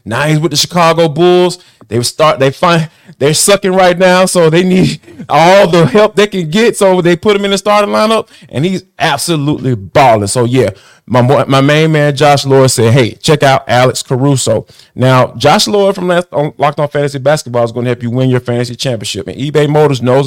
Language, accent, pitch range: English, American, 130-180 Hz